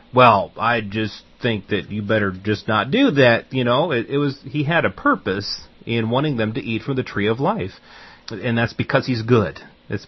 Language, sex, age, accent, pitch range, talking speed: English, male, 40-59, American, 100-115 Hz, 215 wpm